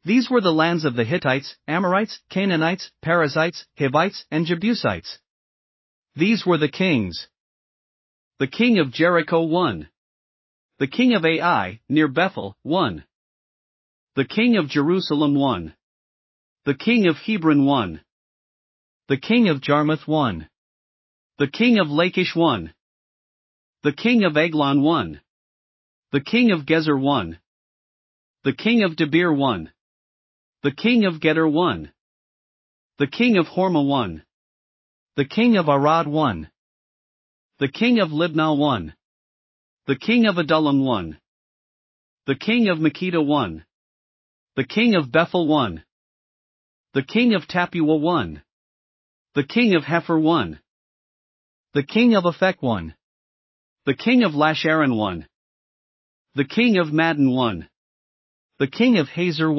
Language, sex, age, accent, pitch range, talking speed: English, male, 40-59, American, 135-180 Hz, 130 wpm